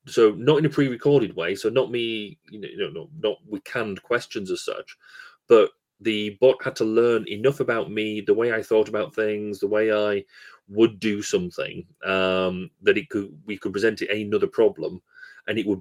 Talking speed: 195 wpm